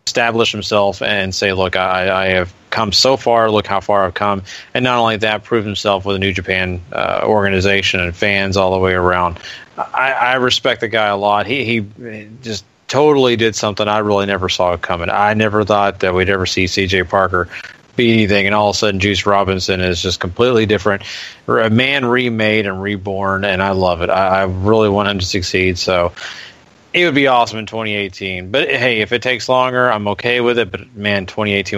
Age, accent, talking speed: 30-49, American, 210 wpm